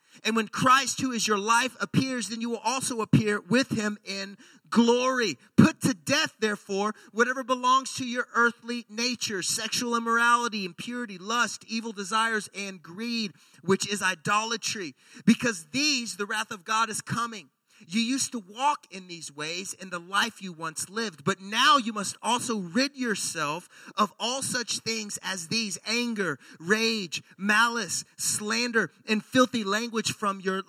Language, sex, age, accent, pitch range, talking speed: English, male, 30-49, American, 195-240 Hz, 160 wpm